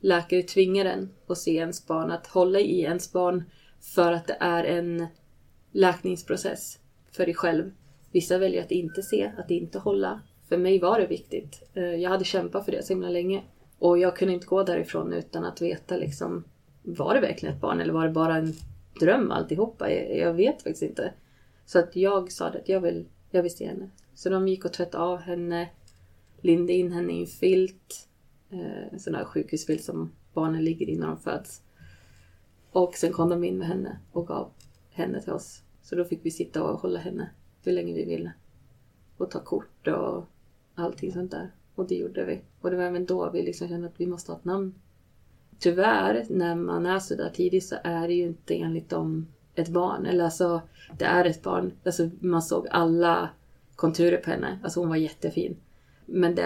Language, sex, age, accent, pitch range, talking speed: Swedish, female, 20-39, native, 160-180 Hz, 195 wpm